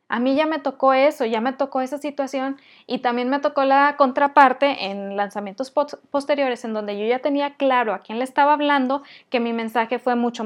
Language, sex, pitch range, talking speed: Spanish, female, 245-285 Hz, 205 wpm